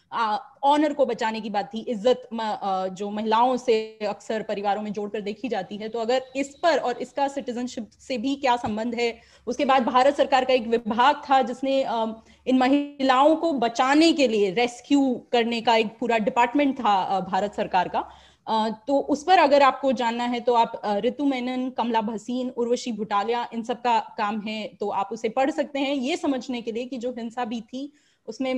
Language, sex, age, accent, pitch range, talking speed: Hindi, female, 30-49, native, 215-270 Hz, 190 wpm